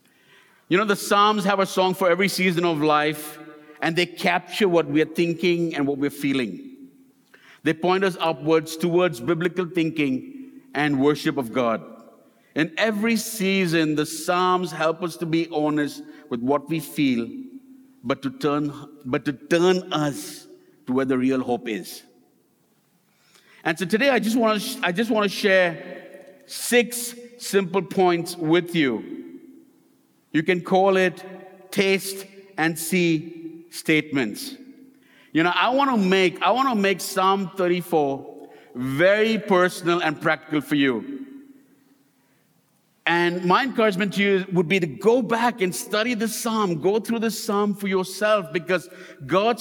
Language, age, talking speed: English, 50-69, 145 wpm